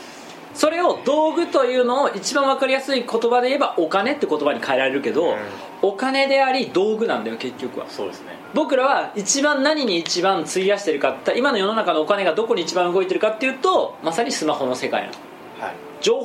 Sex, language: male, Japanese